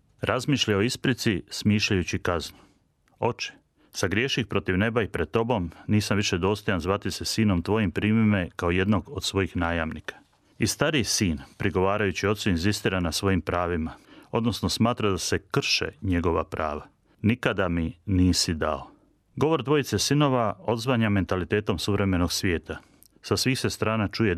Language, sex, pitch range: Croatian, male, 90-115 Hz